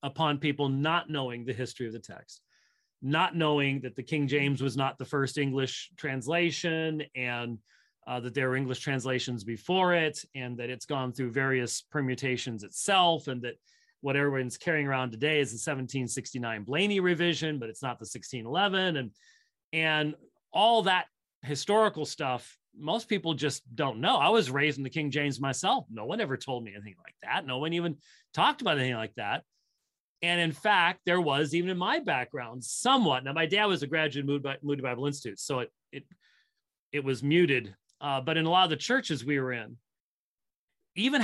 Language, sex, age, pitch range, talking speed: English, male, 30-49, 130-175 Hz, 185 wpm